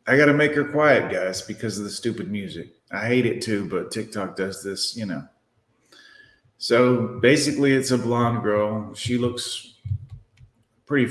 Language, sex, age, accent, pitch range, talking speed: English, male, 30-49, American, 105-125 Hz, 165 wpm